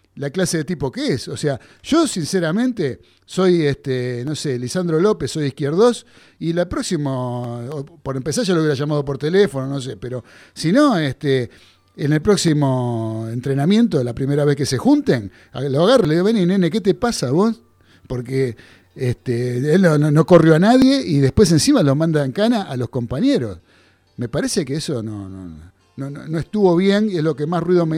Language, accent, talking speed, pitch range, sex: Spanish, Argentinian, 200 wpm, 125-175 Hz, male